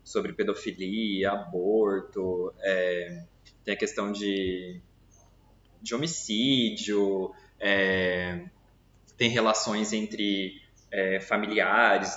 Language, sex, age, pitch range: Portuguese, male, 20-39, 95-115 Hz